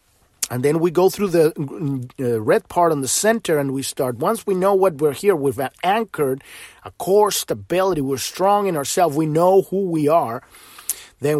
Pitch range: 135-185 Hz